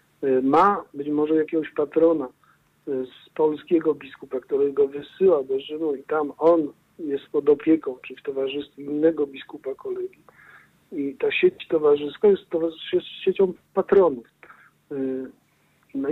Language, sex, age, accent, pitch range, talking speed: Polish, male, 50-69, native, 145-195 Hz, 125 wpm